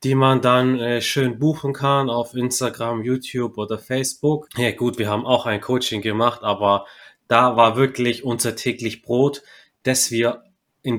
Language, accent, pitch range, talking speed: German, German, 105-130 Hz, 160 wpm